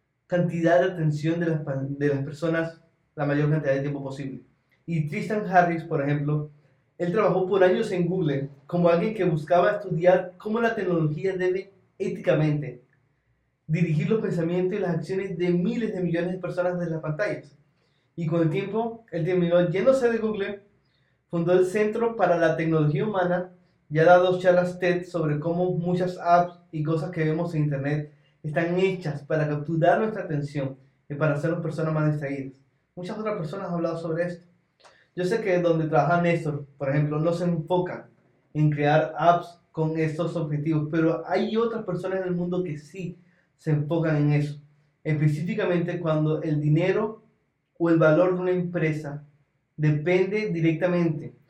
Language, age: Spanish, 20-39